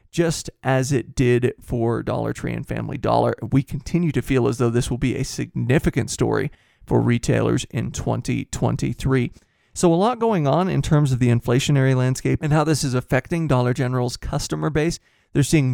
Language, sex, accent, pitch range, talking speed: English, male, American, 125-160 Hz, 185 wpm